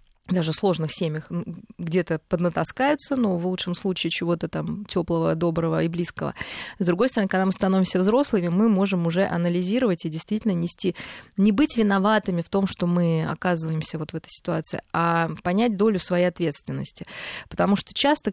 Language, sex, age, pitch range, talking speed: Russian, female, 20-39, 170-215 Hz, 165 wpm